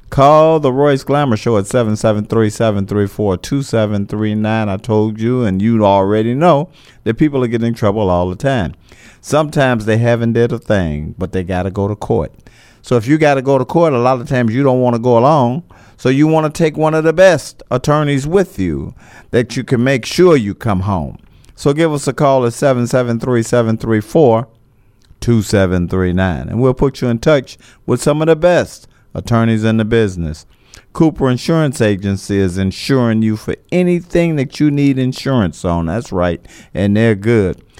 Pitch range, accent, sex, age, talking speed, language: 105-135 Hz, American, male, 50-69, 180 wpm, English